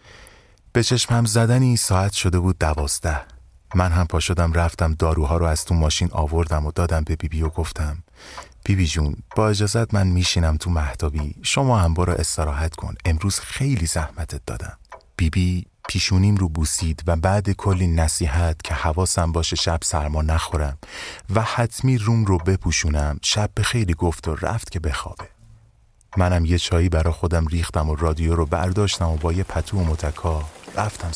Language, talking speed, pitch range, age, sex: Persian, 165 wpm, 80-100 Hz, 30-49, male